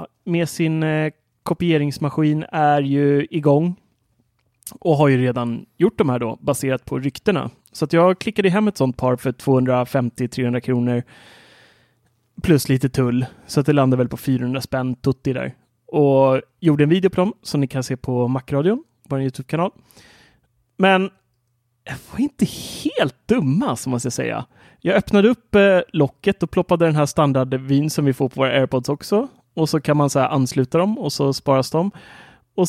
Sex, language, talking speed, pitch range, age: male, Swedish, 180 wpm, 130-170 Hz, 30-49